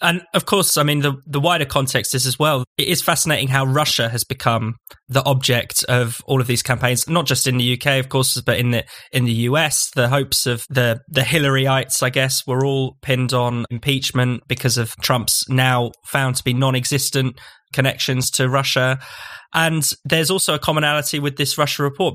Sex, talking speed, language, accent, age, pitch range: male, 195 wpm, English, British, 20-39, 125-140 Hz